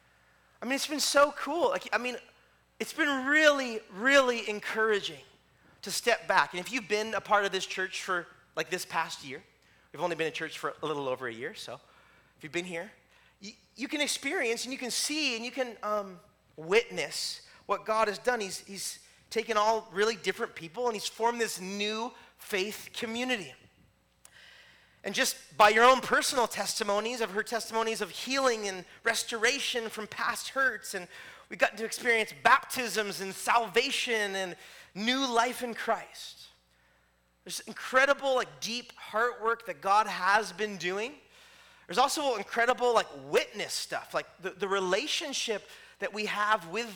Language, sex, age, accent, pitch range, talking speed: English, male, 30-49, American, 185-240 Hz, 170 wpm